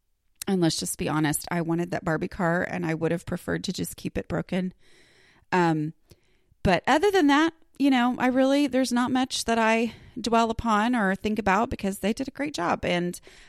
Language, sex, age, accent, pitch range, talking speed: English, female, 30-49, American, 175-255 Hz, 205 wpm